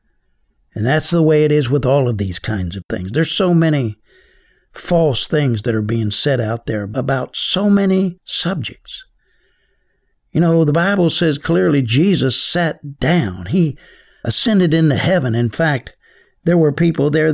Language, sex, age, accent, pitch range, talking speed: English, male, 60-79, American, 125-170 Hz, 165 wpm